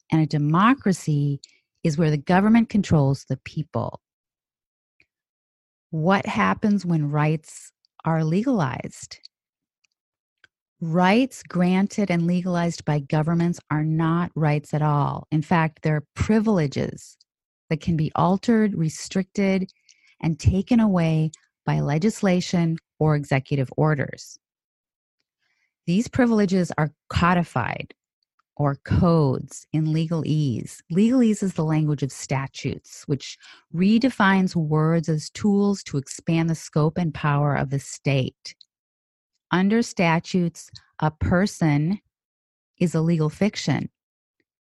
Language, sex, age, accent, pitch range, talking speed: English, female, 30-49, American, 150-185 Hz, 110 wpm